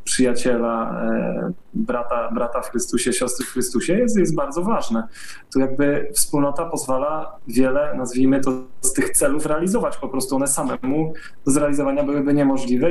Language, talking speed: Polish, 150 wpm